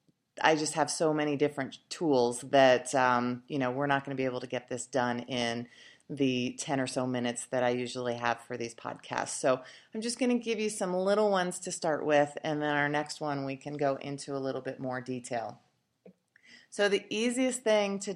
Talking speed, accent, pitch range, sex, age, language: 220 wpm, American, 140-185 Hz, female, 30-49, English